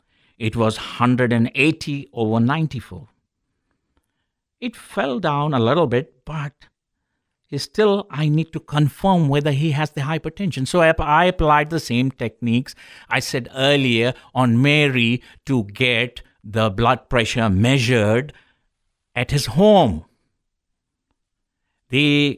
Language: English